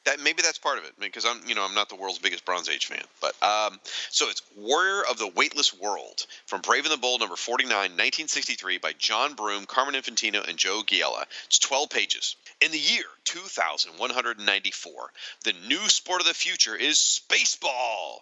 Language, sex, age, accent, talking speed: English, male, 40-59, American, 215 wpm